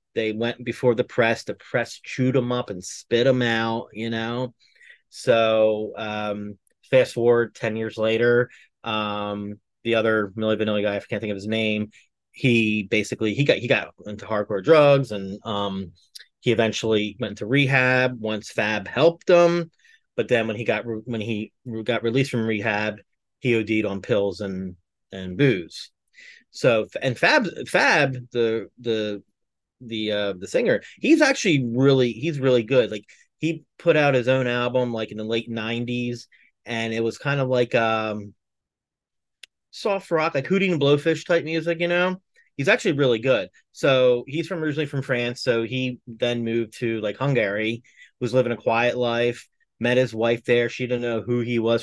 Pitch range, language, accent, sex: 110-130 Hz, English, American, male